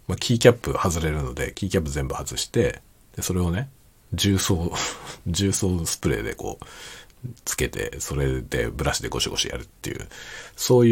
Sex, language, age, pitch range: male, Japanese, 50-69, 75-100 Hz